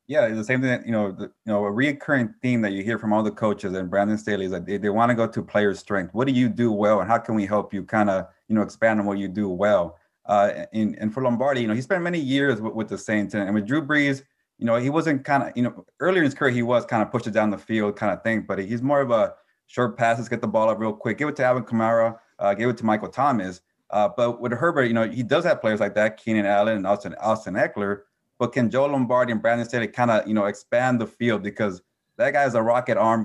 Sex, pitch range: male, 105-125 Hz